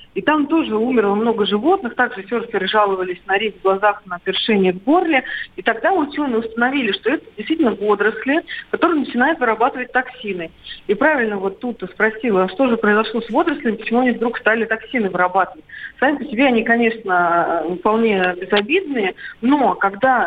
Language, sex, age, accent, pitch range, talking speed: Russian, female, 40-59, native, 205-260 Hz, 160 wpm